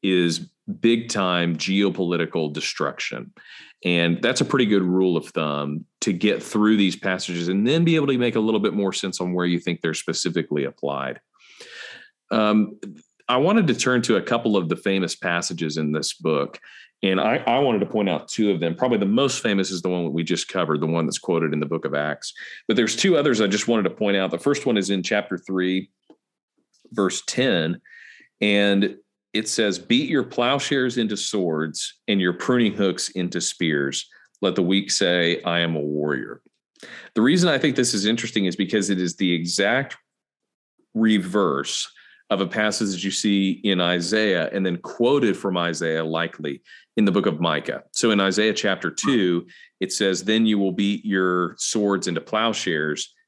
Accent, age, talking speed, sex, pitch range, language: American, 40-59, 190 wpm, male, 85-105 Hz, English